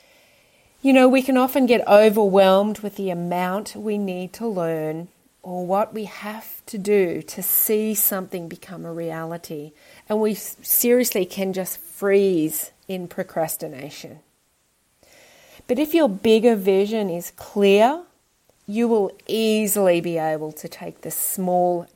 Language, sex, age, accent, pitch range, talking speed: English, female, 30-49, Australian, 170-215 Hz, 135 wpm